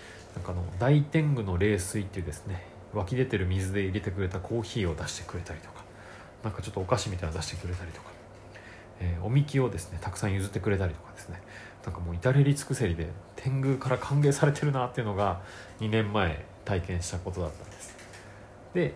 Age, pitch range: 30-49, 90-115 Hz